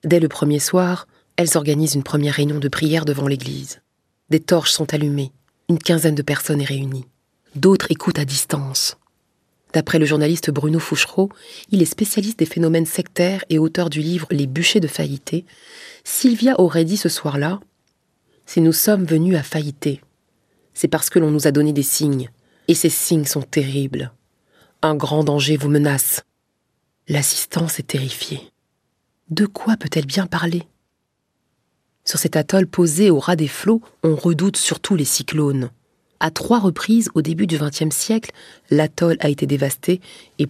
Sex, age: female, 30-49